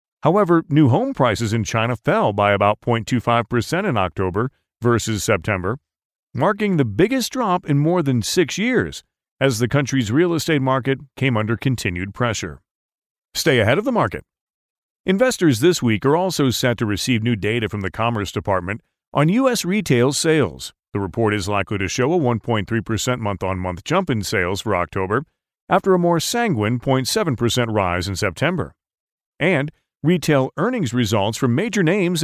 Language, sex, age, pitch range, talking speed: English, male, 40-59, 110-160 Hz, 160 wpm